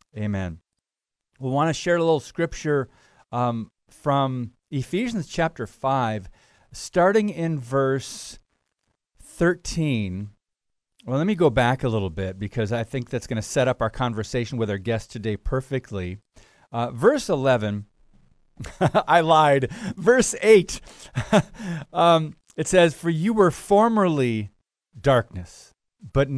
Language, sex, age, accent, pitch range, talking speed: English, male, 40-59, American, 115-165 Hz, 125 wpm